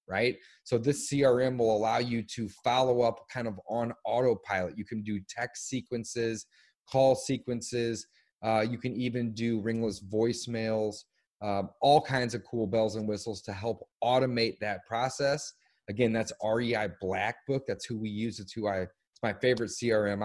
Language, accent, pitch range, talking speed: English, American, 105-120 Hz, 165 wpm